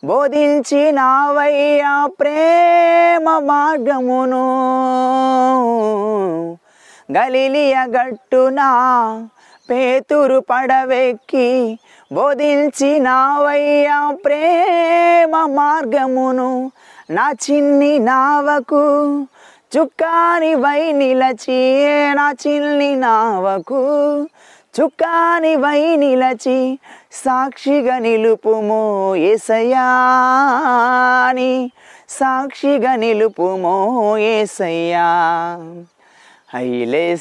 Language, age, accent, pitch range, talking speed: Telugu, 20-39, native, 195-285 Hz, 50 wpm